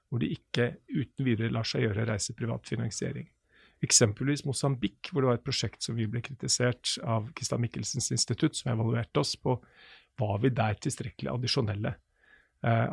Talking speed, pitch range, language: 155 wpm, 115-135 Hz, English